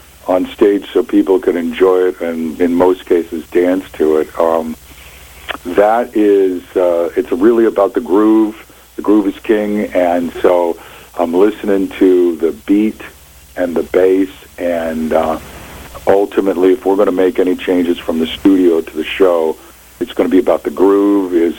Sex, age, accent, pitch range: male, 50-69, American, 85-115 Hz